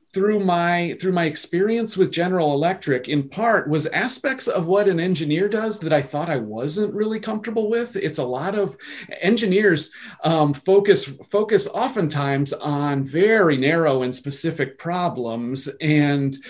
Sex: male